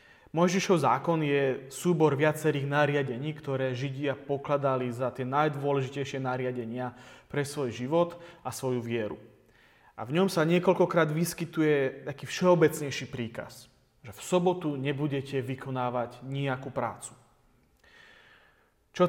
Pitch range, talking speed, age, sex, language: 125-155 Hz, 115 wpm, 30-49, male, Slovak